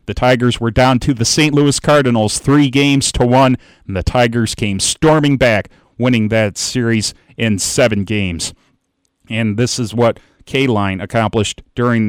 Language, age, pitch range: English, 40-59, 110-130 Hz